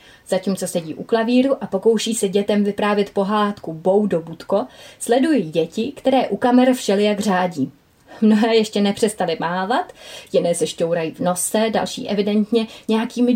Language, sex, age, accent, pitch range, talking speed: Czech, female, 30-49, native, 185-245 Hz, 135 wpm